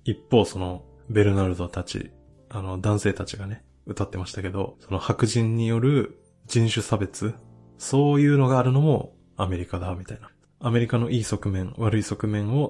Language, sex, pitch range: Japanese, male, 95-115 Hz